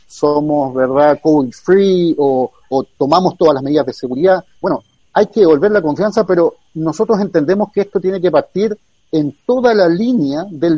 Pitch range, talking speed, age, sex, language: 150-195 Hz, 175 wpm, 40-59, male, Spanish